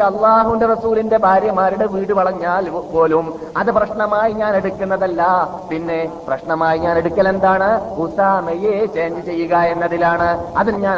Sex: male